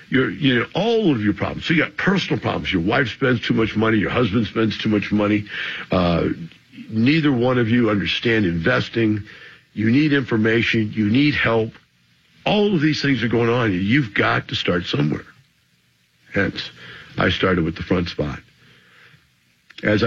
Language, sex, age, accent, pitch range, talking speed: English, male, 60-79, American, 100-130 Hz, 170 wpm